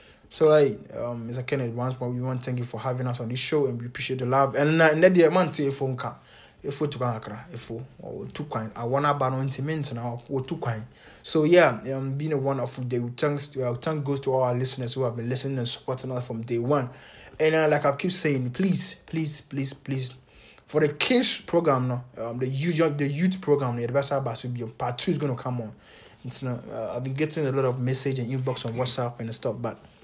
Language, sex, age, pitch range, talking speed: English, male, 20-39, 125-150 Hz, 220 wpm